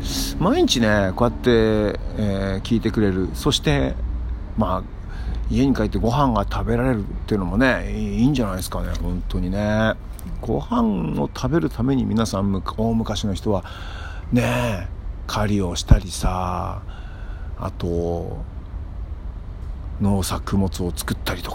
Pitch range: 85-110 Hz